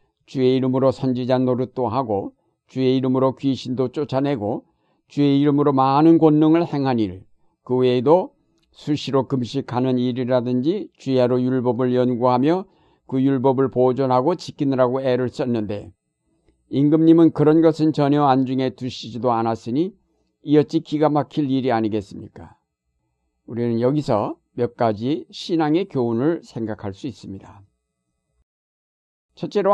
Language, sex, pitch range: Korean, male, 115-150 Hz